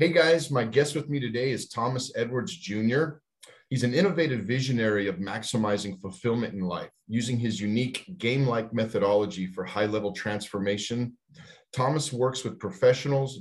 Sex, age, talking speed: male, 40-59, 145 wpm